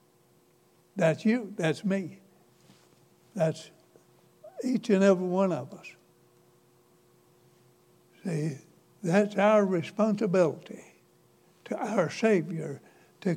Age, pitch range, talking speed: 60-79, 165-205 Hz, 85 wpm